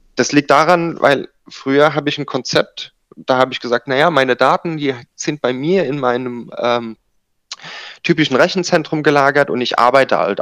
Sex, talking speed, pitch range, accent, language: male, 175 wpm, 115-140 Hz, German, German